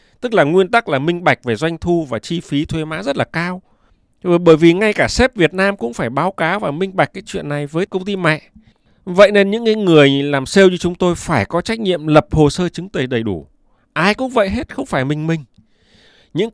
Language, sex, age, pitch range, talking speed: Vietnamese, male, 20-39, 120-185 Hz, 245 wpm